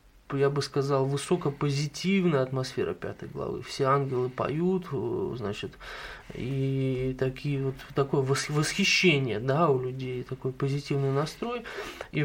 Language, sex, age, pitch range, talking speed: English, male, 20-39, 130-150 Hz, 115 wpm